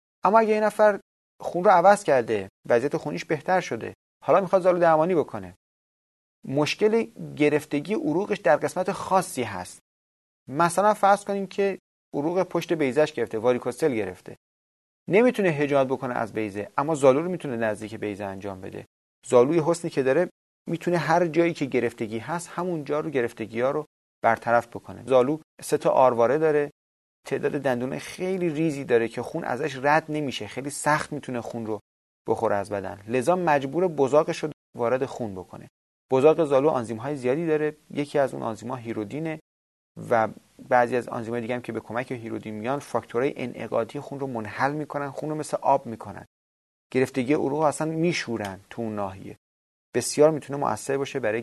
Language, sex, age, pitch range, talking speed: Persian, male, 30-49, 110-160 Hz, 165 wpm